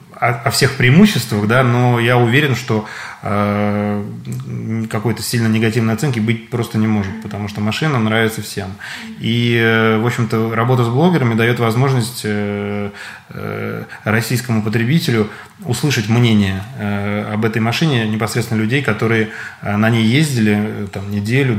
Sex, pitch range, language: male, 105-120 Hz, Russian